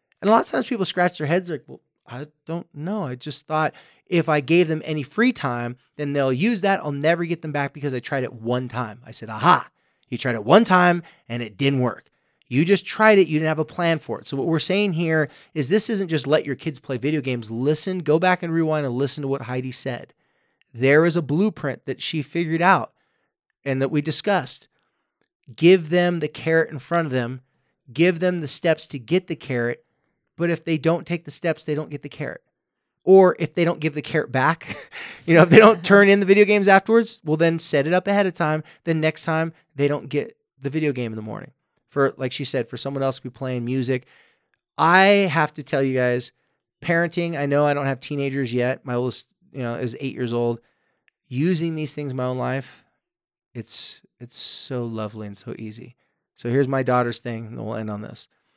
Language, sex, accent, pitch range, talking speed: English, male, American, 130-170 Hz, 230 wpm